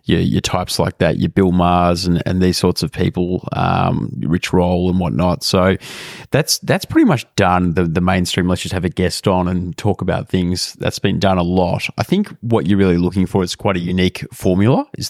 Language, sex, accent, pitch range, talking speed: English, male, Australian, 90-100 Hz, 225 wpm